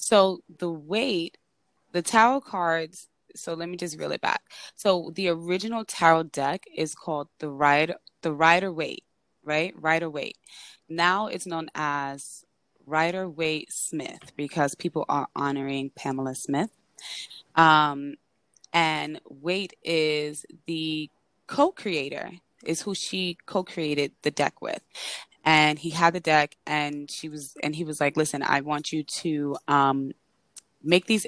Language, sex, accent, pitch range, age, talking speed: English, female, American, 145-175 Hz, 20-39, 140 wpm